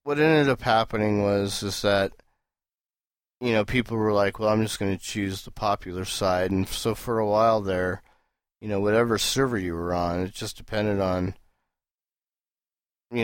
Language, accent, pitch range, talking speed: English, American, 90-105 Hz, 175 wpm